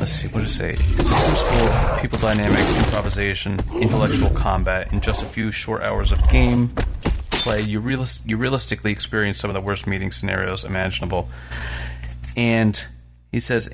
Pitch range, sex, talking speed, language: 90-110 Hz, male, 170 wpm, English